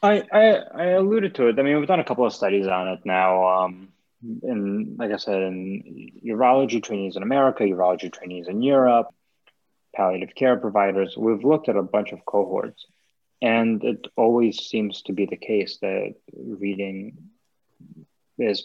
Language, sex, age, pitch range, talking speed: English, male, 20-39, 95-130 Hz, 165 wpm